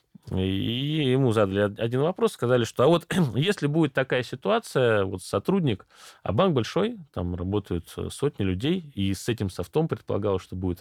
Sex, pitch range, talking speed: male, 95-135 Hz, 155 wpm